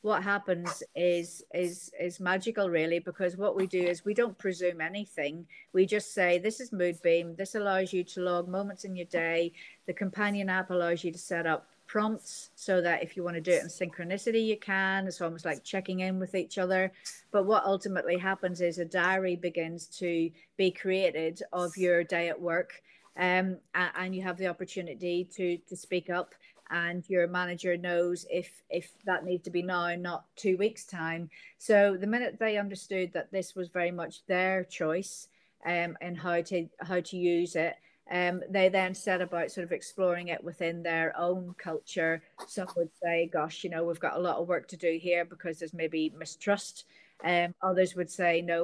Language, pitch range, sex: English, 170-185 Hz, female